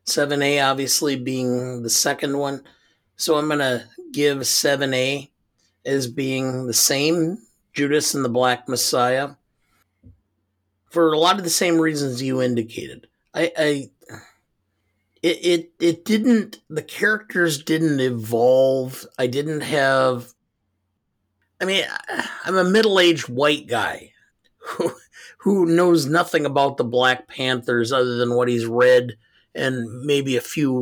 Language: English